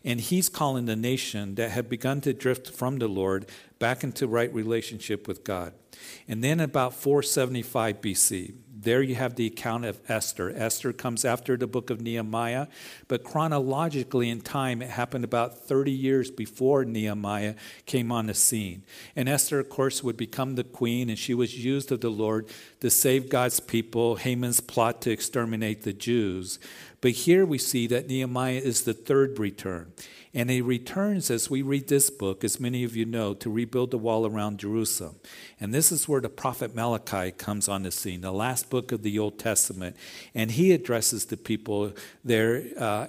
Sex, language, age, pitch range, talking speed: male, English, 50-69, 110-130 Hz, 185 wpm